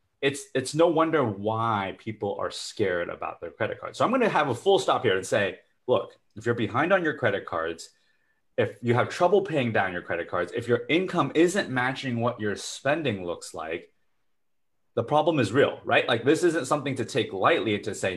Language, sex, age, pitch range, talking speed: English, male, 30-49, 105-135 Hz, 210 wpm